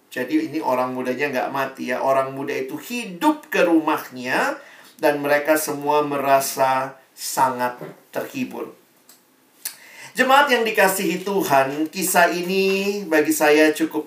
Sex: male